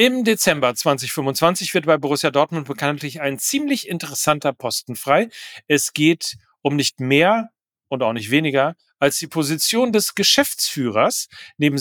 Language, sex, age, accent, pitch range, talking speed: German, male, 40-59, German, 130-170 Hz, 140 wpm